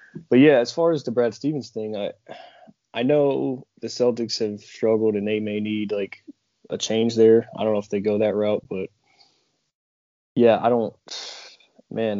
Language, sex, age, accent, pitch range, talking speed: English, male, 20-39, American, 100-115 Hz, 180 wpm